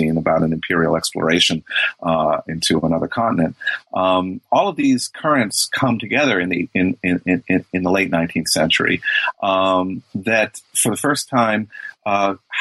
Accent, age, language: American, 40-59, English